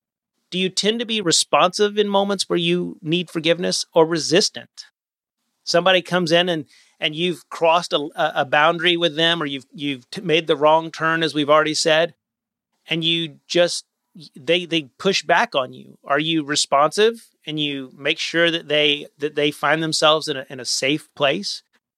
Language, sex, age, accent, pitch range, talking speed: English, male, 30-49, American, 150-180 Hz, 180 wpm